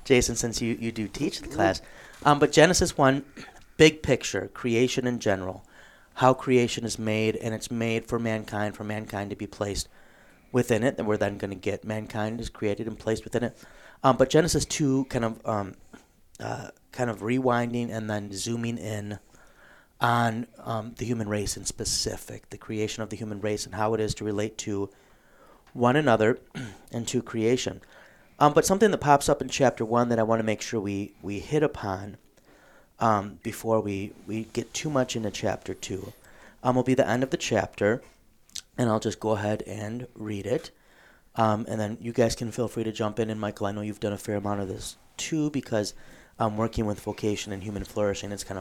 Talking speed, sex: 200 wpm, male